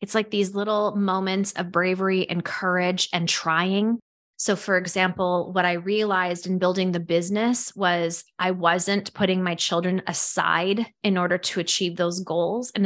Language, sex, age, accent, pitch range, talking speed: English, female, 20-39, American, 180-215 Hz, 165 wpm